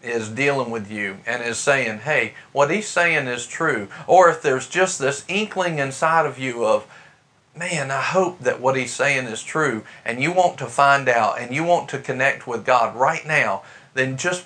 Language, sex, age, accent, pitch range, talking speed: English, male, 40-59, American, 130-170 Hz, 205 wpm